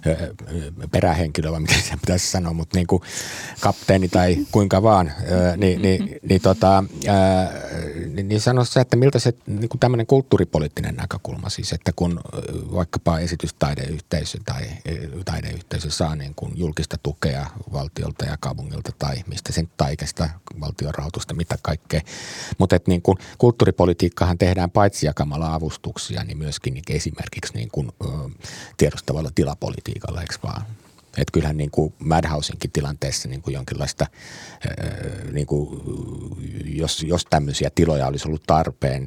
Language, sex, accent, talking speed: Finnish, male, native, 125 wpm